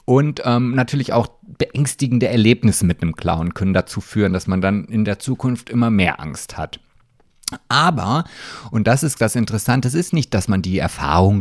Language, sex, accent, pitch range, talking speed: German, male, German, 105-140 Hz, 185 wpm